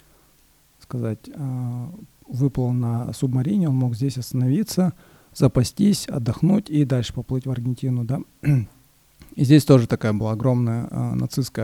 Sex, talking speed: male, 125 wpm